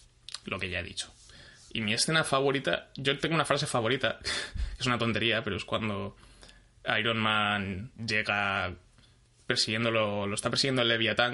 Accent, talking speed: Spanish, 160 wpm